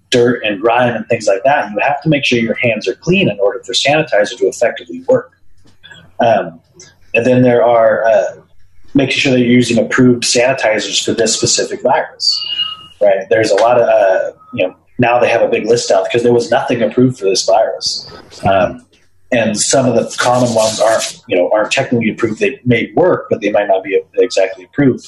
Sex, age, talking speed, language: male, 30-49, 205 wpm, English